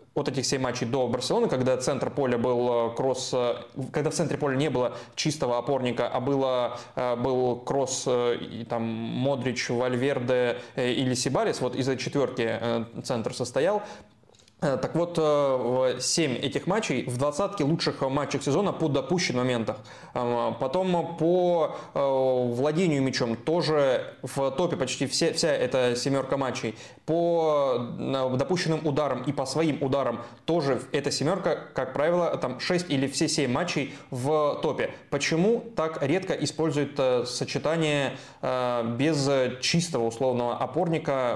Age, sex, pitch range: 20-39, male, 125-150 Hz